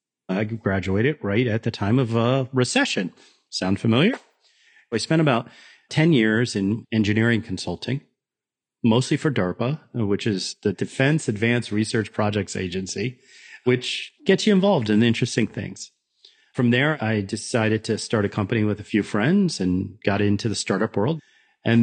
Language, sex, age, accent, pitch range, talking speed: English, male, 40-59, American, 105-120 Hz, 155 wpm